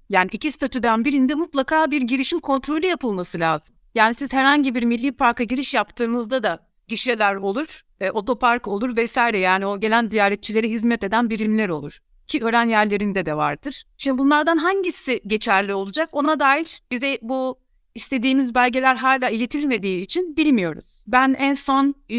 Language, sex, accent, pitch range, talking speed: Turkish, female, native, 205-270 Hz, 150 wpm